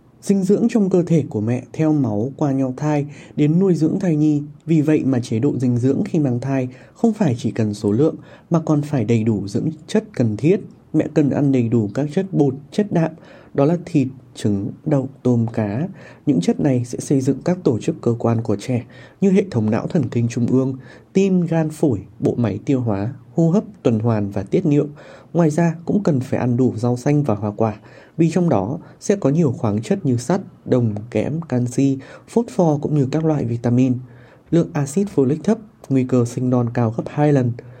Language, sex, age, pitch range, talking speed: Vietnamese, male, 20-39, 120-155 Hz, 220 wpm